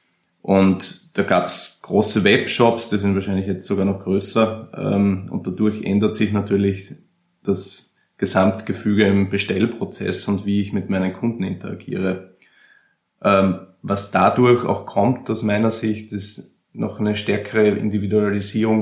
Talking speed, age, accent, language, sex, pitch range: 135 wpm, 20-39, Austrian, German, male, 100-105 Hz